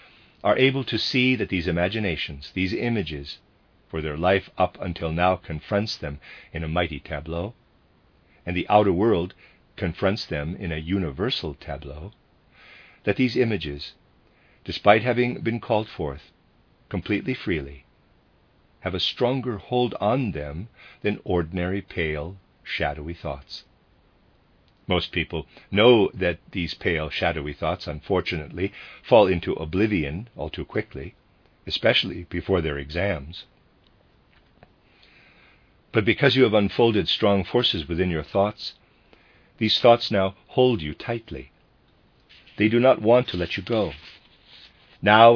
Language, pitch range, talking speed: English, 80-110 Hz, 125 wpm